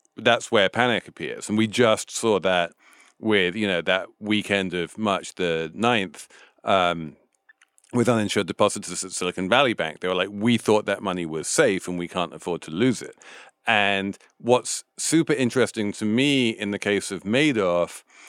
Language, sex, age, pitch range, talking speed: English, male, 40-59, 100-120 Hz, 175 wpm